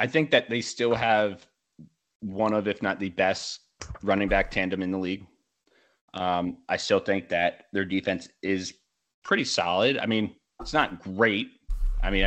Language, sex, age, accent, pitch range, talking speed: English, male, 20-39, American, 95-110 Hz, 170 wpm